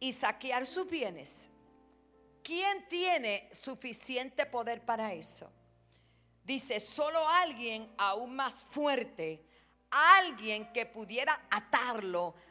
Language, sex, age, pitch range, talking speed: Spanish, female, 50-69, 210-335 Hz, 95 wpm